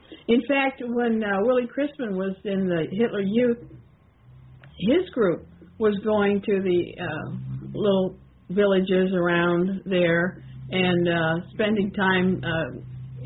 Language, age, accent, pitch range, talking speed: English, 50-69, American, 170-230 Hz, 120 wpm